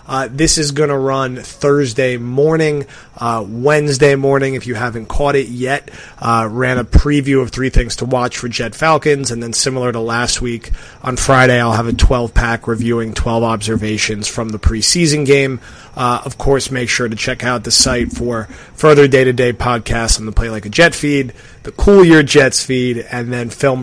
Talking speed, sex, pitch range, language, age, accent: 195 wpm, male, 115-135 Hz, English, 30-49, American